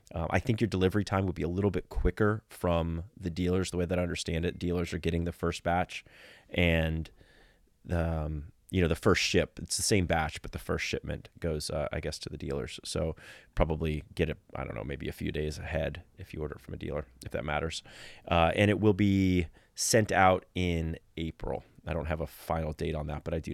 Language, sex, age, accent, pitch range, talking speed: English, male, 30-49, American, 85-105 Hz, 230 wpm